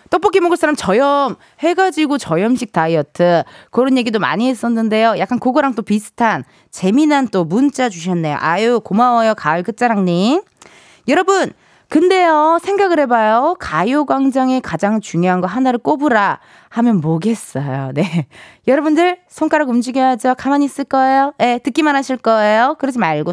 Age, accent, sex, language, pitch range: 20-39, native, female, Korean, 185-295 Hz